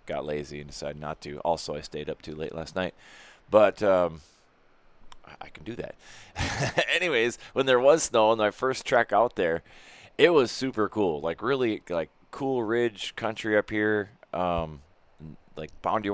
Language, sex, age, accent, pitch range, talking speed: English, male, 30-49, American, 80-105 Hz, 170 wpm